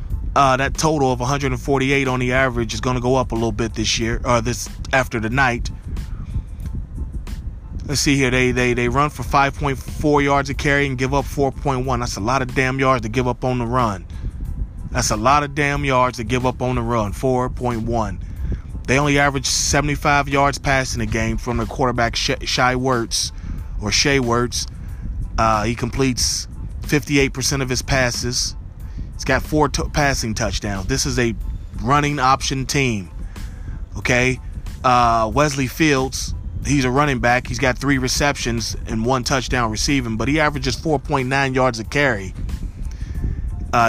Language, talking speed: English, 170 wpm